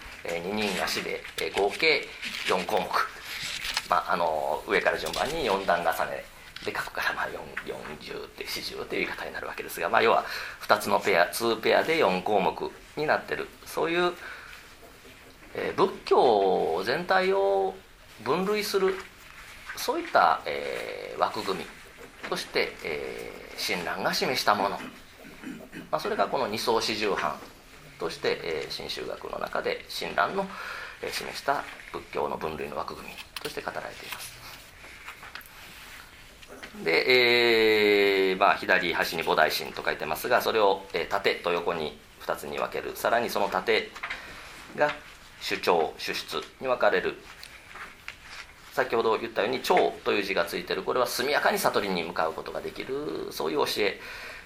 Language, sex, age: English, male, 40-59